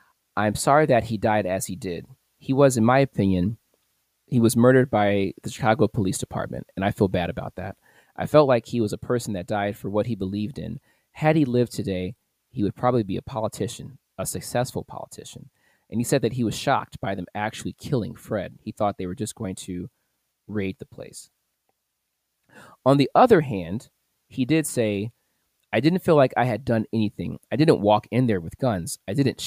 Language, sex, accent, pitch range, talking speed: English, male, American, 100-130 Hz, 205 wpm